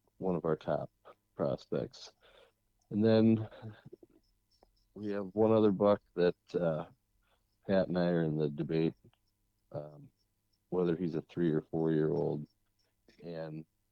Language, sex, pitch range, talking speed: English, male, 80-100 Hz, 135 wpm